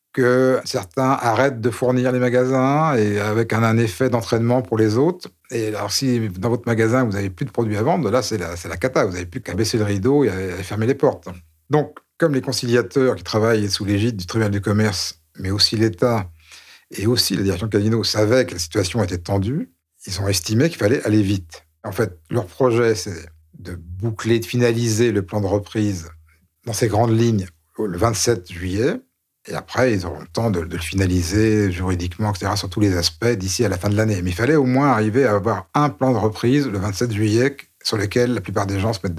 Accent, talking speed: French, 225 wpm